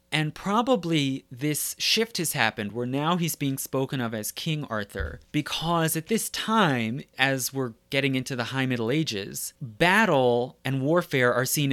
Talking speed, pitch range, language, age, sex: 165 wpm, 120-160 Hz, English, 30-49, male